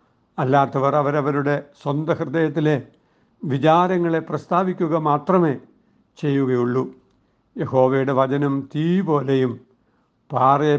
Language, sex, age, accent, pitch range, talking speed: Malayalam, male, 60-79, native, 135-155 Hz, 70 wpm